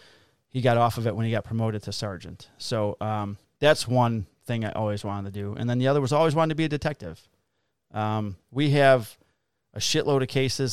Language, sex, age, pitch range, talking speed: English, male, 30-49, 110-130 Hz, 220 wpm